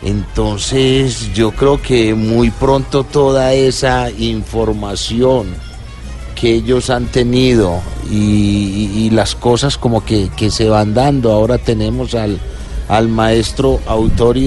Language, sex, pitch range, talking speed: Spanish, male, 105-120 Hz, 125 wpm